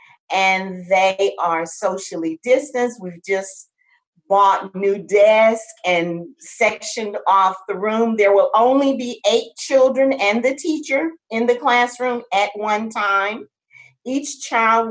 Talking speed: 130 wpm